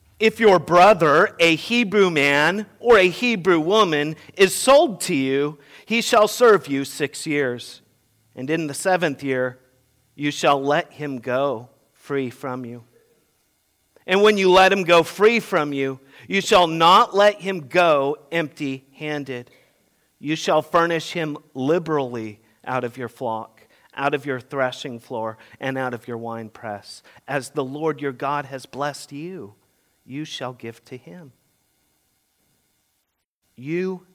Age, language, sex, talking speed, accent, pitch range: 40-59, English, male, 145 wpm, American, 110-155 Hz